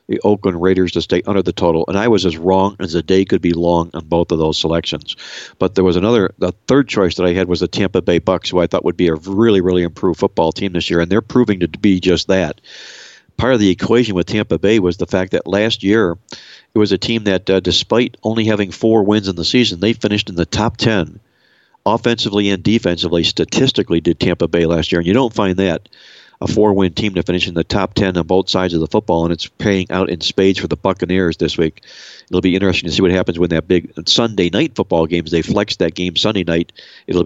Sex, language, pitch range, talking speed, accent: male, English, 85-100 Hz, 245 wpm, American